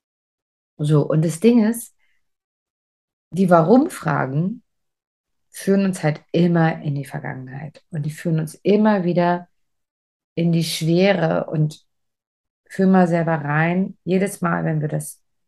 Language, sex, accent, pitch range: German, female, German, 150-185 Hz